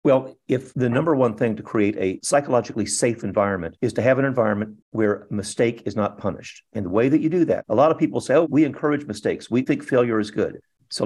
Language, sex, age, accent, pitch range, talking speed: English, male, 50-69, American, 105-135 Hz, 240 wpm